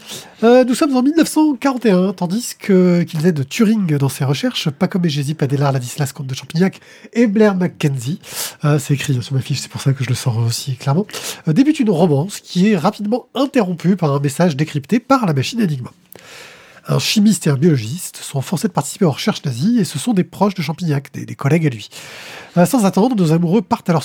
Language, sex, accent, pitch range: French, male, French, 140-185 Hz